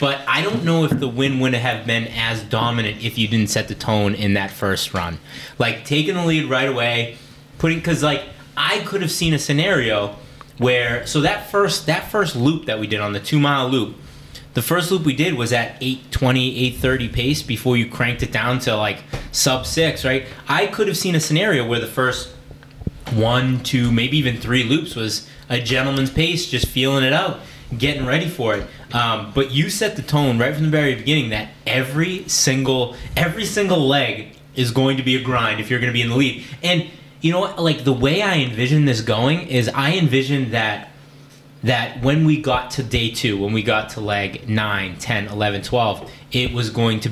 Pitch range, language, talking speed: 115-145 Hz, English, 210 wpm